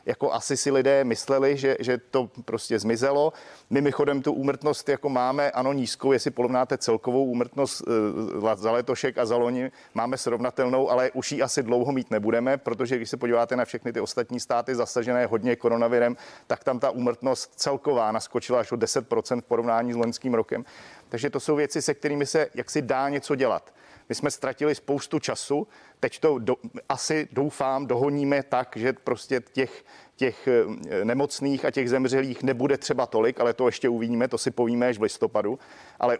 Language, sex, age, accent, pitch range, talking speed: Czech, male, 40-59, native, 120-140 Hz, 175 wpm